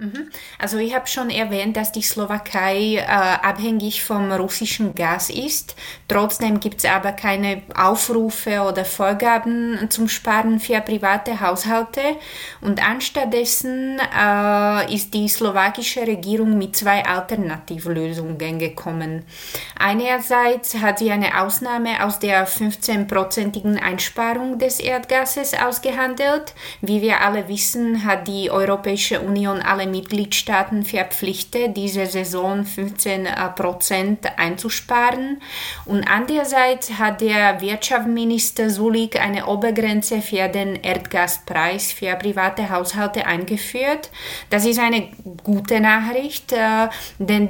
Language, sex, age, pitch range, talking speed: German, female, 20-39, 195-230 Hz, 110 wpm